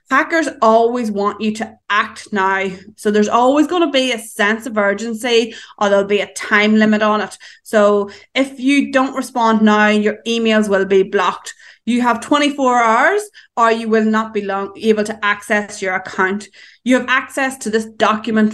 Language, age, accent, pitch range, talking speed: English, 20-39, Irish, 205-250 Hz, 180 wpm